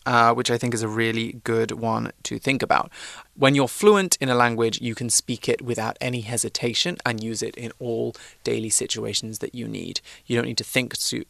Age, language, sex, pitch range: 20-39, Chinese, male, 110-130 Hz